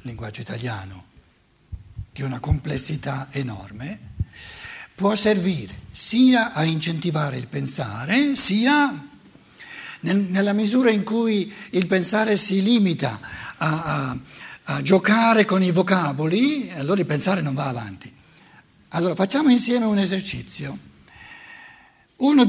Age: 60-79